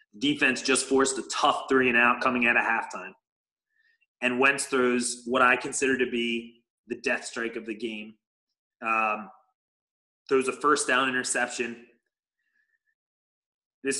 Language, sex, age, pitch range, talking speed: English, male, 30-49, 115-135 Hz, 140 wpm